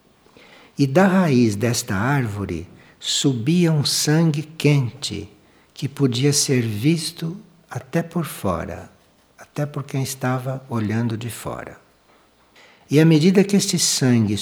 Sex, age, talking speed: male, 60-79, 120 wpm